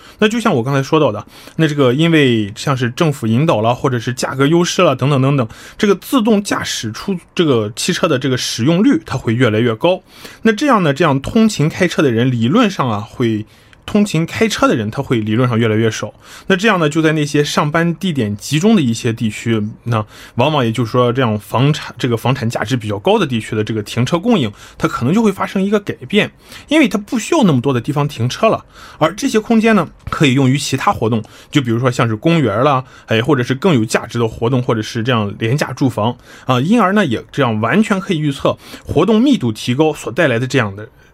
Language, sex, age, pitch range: Korean, male, 20-39, 120-180 Hz